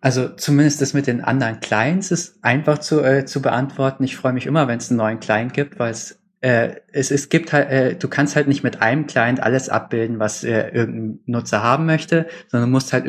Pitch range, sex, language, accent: 110-135 Hz, male, German, German